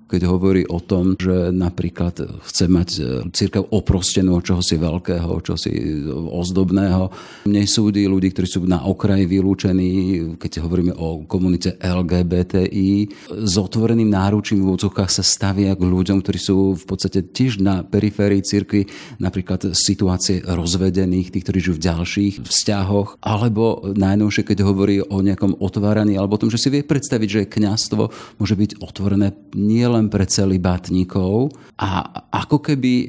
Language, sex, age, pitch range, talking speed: Slovak, male, 40-59, 90-105 Hz, 145 wpm